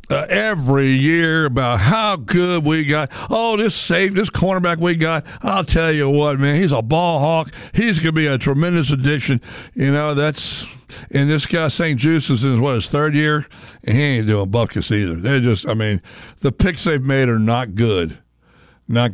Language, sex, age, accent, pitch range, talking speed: English, male, 60-79, American, 120-160 Hz, 200 wpm